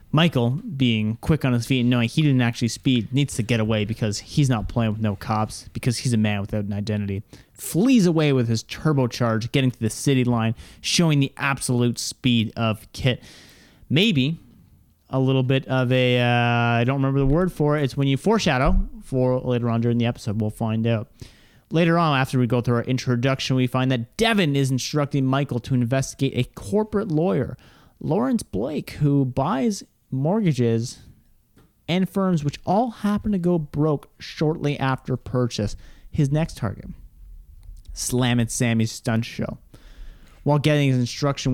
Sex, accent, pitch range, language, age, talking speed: male, American, 115-150 Hz, English, 30-49, 175 wpm